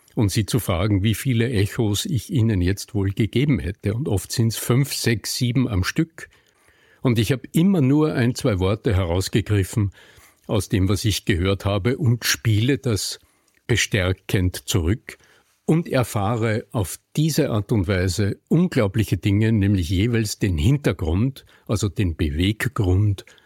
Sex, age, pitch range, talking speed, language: male, 50-69, 95-120 Hz, 150 wpm, German